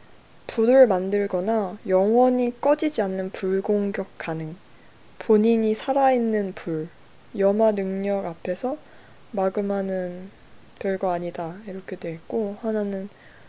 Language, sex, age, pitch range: Korean, female, 20-39, 190-245 Hz